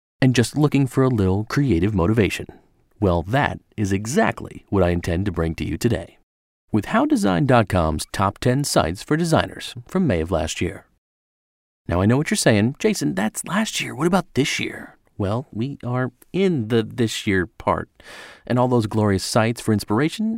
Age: 40-59